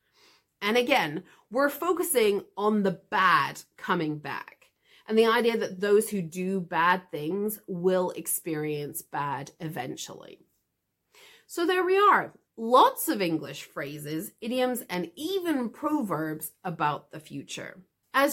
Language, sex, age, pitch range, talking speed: English, female, 30-49, 165-245 Hz, 125 wpm